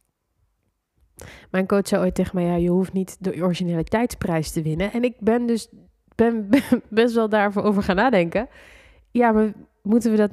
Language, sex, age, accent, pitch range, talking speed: Dutch, female, 20-39, Dutch, 180-235 Hz, 180 wpm